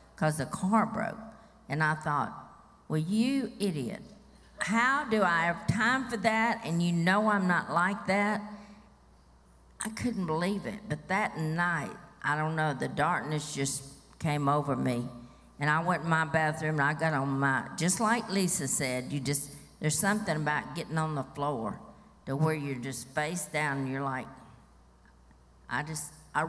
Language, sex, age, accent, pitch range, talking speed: English, female, 50-69, American, 150-205 Hz, 170 wpm